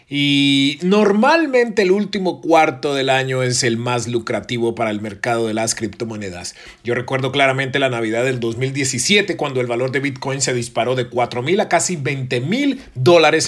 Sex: male